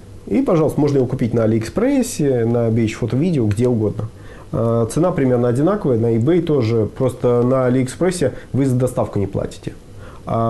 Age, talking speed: 30-49, 160 wpm